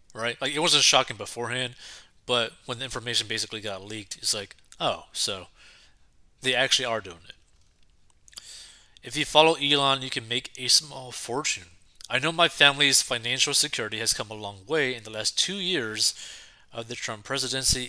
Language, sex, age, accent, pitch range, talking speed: English, male, 20-39, American, 110-145 Hz, 175 wpm